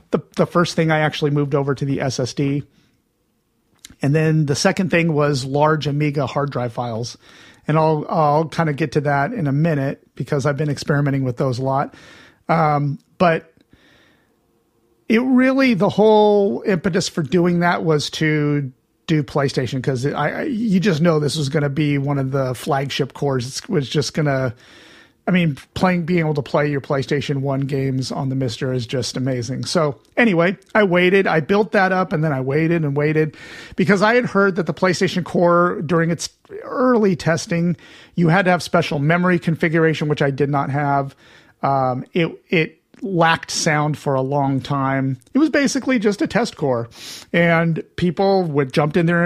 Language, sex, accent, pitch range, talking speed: English, male, American, 145-175 Hz, 185 wpm